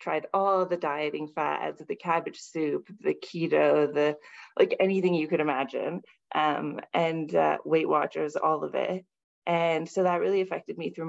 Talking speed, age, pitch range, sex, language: 170 wpm, 20-39, 155-180 Hz, female, English